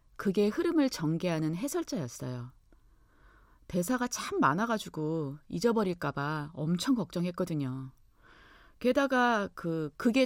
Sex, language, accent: female, Korean, native